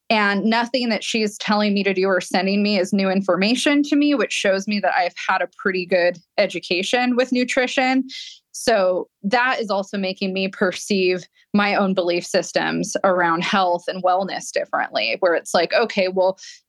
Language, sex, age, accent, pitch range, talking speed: English, female, 20-39, American, 185-220 Hz, 175 wpm